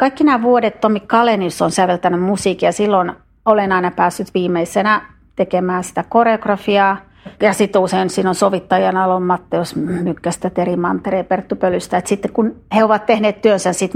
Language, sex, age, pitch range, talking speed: Finnish, female, 30-49, 175-215 Hz, 160 wpm